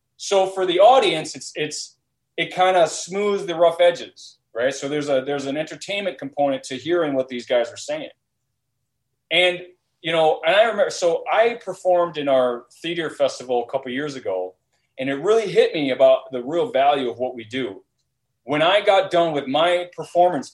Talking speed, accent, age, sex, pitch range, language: 190 wpm, American, 30-49, male, 135-190 Hz, English